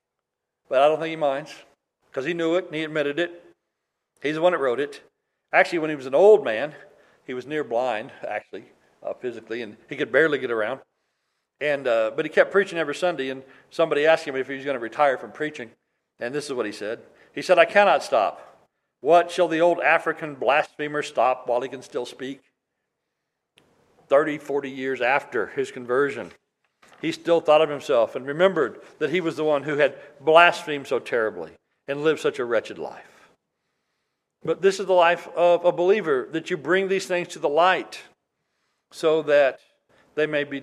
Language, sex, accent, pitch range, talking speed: English, male, American, 130-170 Hz, 195 wpm